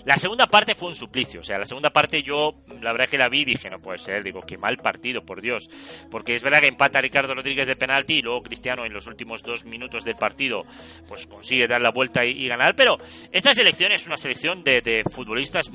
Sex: male